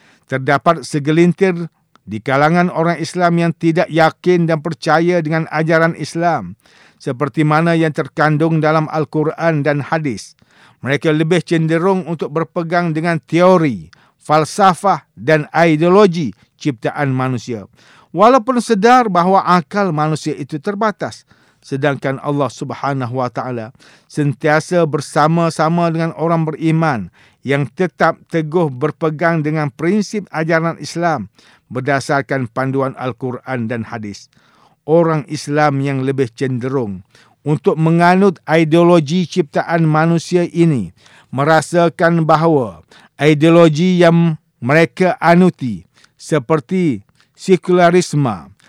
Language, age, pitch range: English, 50-69, 140-170 Hz